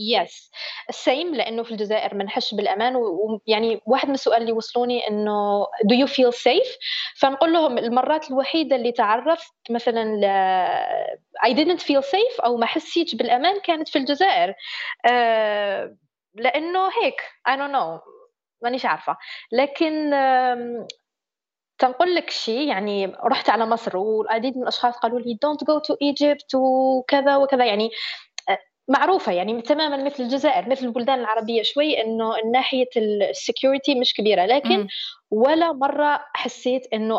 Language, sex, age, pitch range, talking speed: Arabic, female, 20-39, 225-290 Hz, 135 wpm